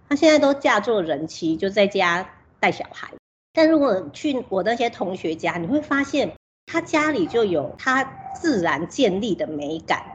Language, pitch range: Chinese, 180-290 Hz